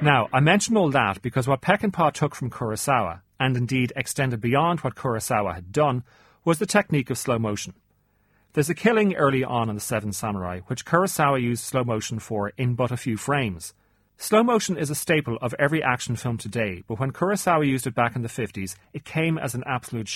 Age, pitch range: 40-59, 115-155 Hz